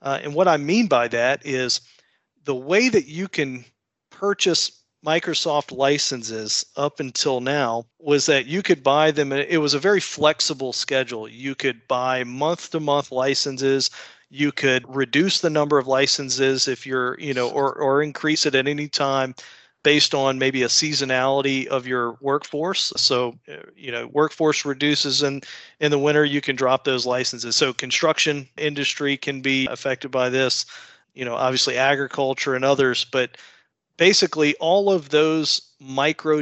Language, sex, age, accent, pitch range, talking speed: English, male, 40-59, American, 130-150 Hz, 160 wpm